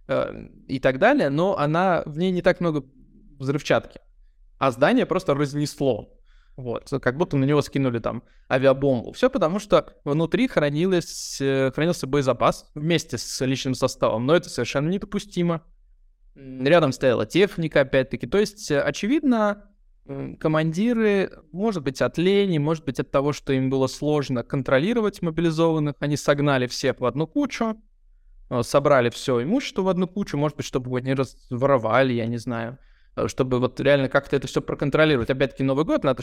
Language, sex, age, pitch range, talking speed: Russian, male, 20-39, 130-175 Hz, 150 wpm